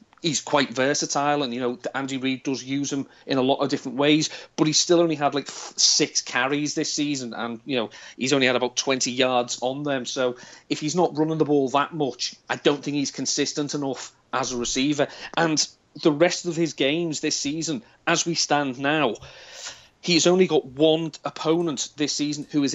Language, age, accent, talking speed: English, 30-49, British, 205 wpm